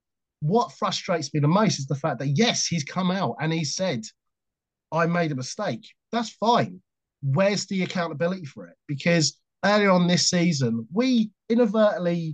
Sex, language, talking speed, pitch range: male, English, 165 wpm, 150-195 Hz